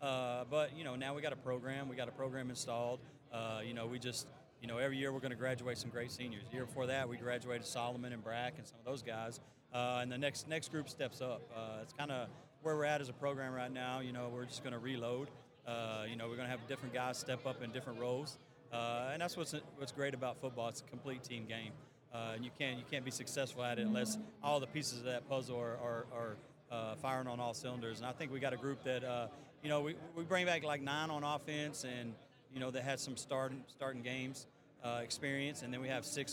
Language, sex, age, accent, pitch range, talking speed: English, male, 40-59, American, 125-140 Hz, 260 wpm